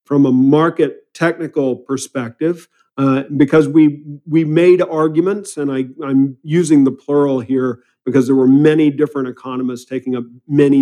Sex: male